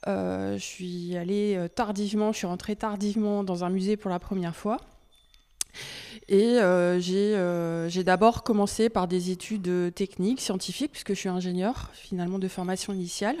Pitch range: 175-205 Hz